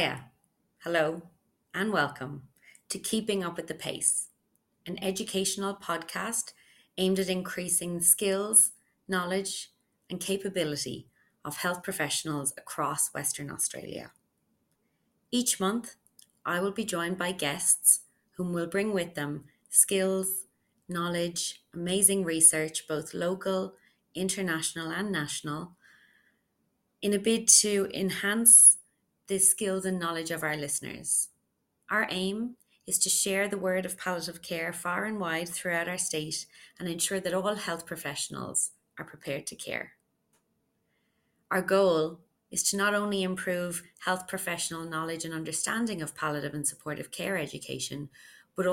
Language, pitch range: English, 160-195 Hz